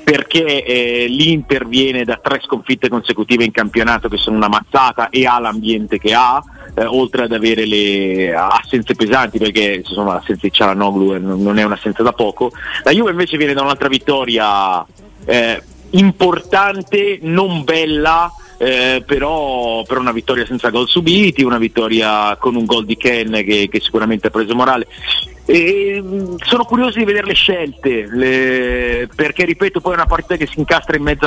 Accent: native